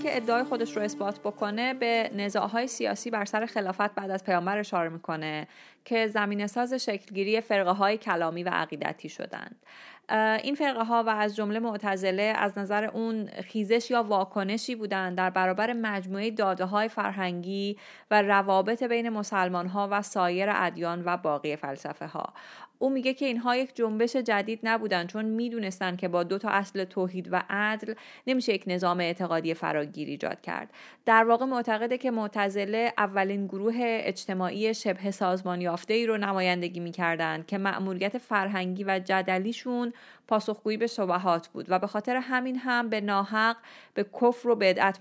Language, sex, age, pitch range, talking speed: Persian, female, 30-49, 185-225 Hz, 155 wpm